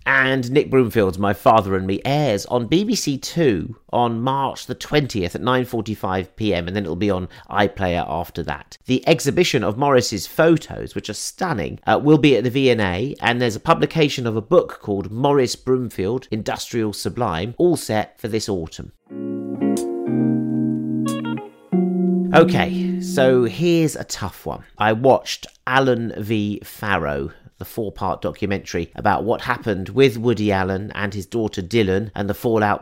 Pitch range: 95-125 Hz